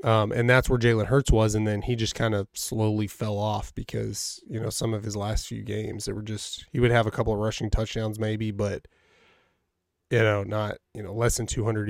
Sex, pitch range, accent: male, 105-120 Hz, American